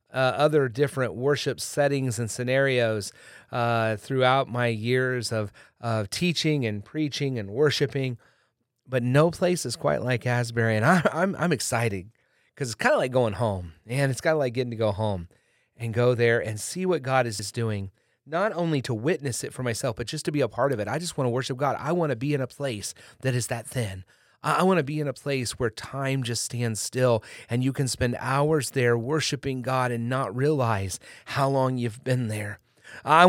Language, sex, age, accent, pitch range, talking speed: English, male, 30-49, American, 115-145 Hz, 210 wpm